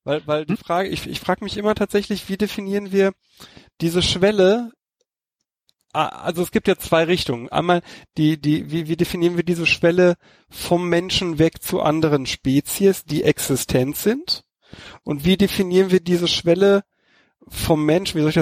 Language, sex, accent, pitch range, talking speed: German, male, German, 150-195 Hz, 165 wpm